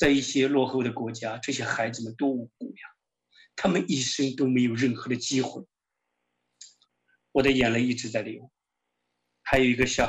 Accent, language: native, Chinese